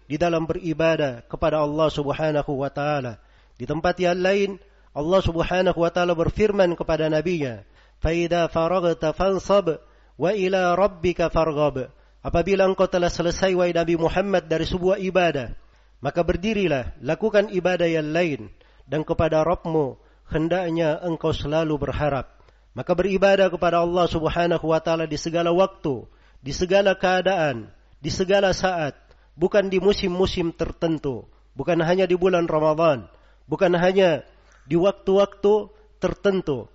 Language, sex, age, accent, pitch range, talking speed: Indonesian, male, 40-59, native, 150-180 Hz, 125 wpm